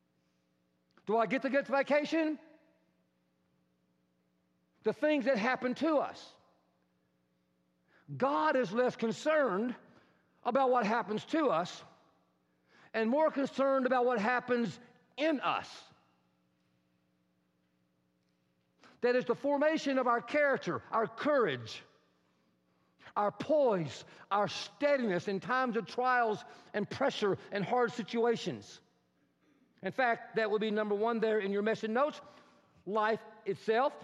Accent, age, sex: American, 50-69, male